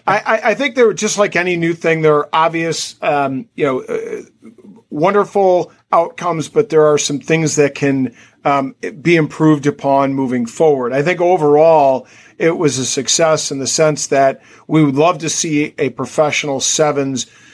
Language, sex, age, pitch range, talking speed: English, male, 40-59, 140-170 Hz, 170 wpm